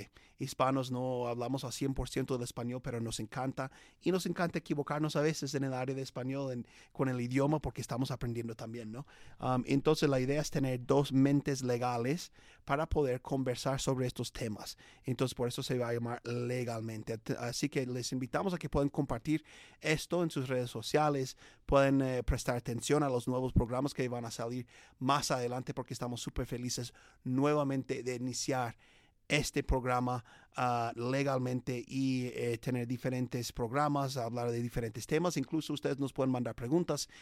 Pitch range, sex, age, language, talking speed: 120-140 Hz, male, 30-49, Spanish, 170 wpm